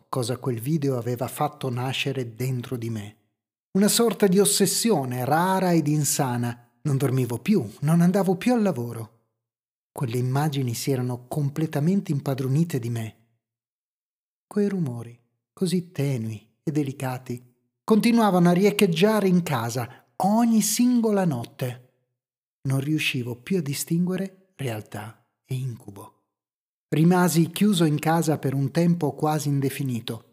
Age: 30-49